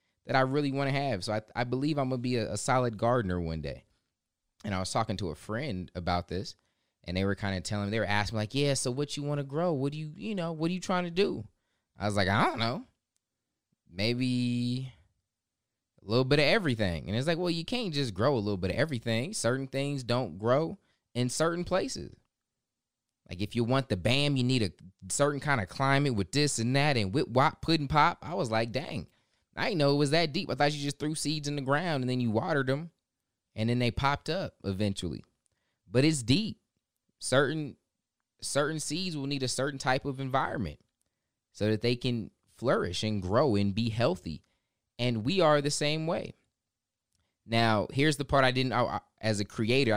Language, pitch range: English, 105-140 Hz